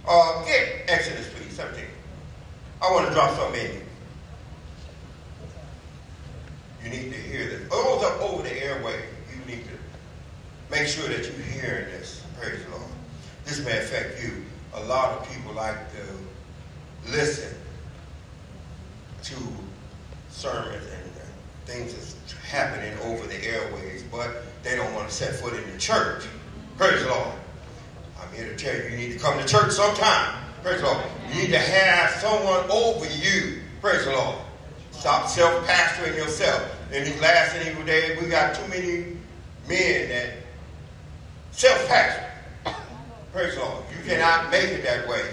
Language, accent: English, American